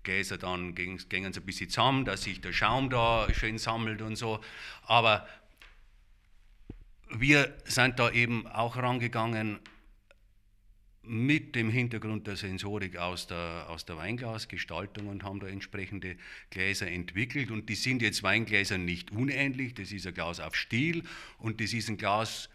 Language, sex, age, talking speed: German, male, 50-69, 155 wpm